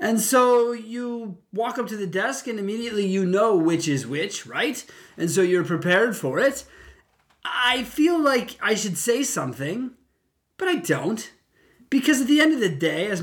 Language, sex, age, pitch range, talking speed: English, male, 20-39, 170-235 Hz, 180 wpm